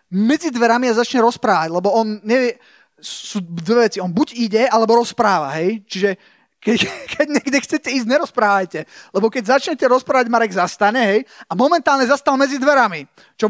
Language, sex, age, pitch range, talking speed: Slovak, male, 20-39, 200-260 Hz, 165 wpm